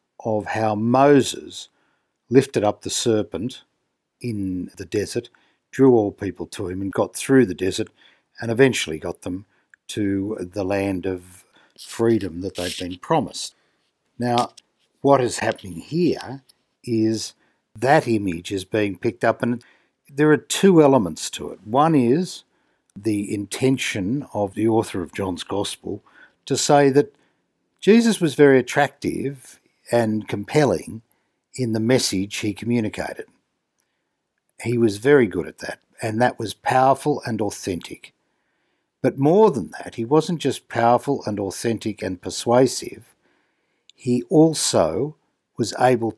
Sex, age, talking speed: male, 60-79, 135 wpm